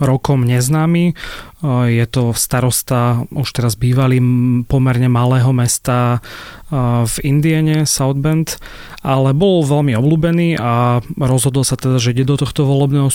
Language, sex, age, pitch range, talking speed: Slovak, male, 30-49, 120-145 Hz, 130 wpm